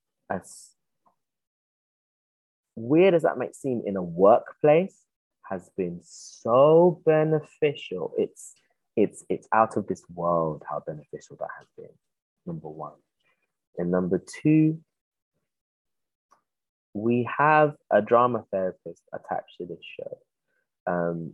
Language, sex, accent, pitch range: English, male, British, 90-145 Hz